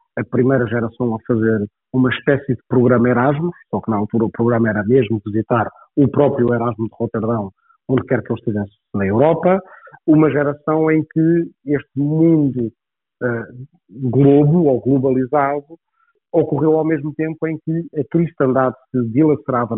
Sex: male